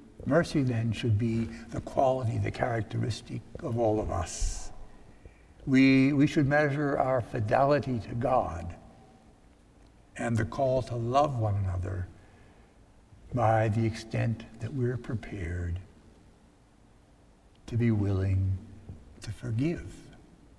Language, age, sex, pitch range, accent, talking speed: English, 60-79, male, 105-130 Hz, American, 110 wpm